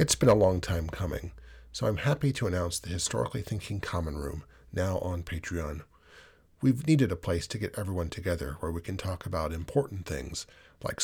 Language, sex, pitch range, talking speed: English, male, 90-125 Hz, 190 wpm